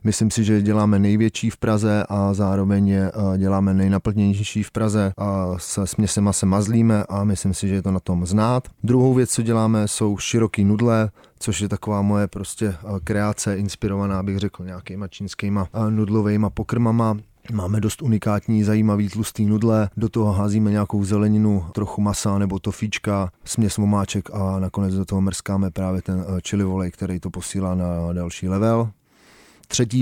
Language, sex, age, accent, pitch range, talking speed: Czech, male, 30-49, native, 95-110 Hz, 160 wpm